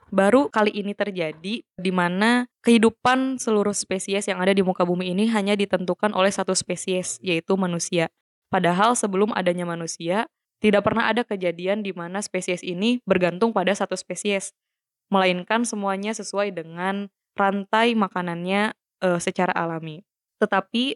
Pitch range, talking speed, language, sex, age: 180-210 Hz, 135 wpm, Indonesian, female, 20-39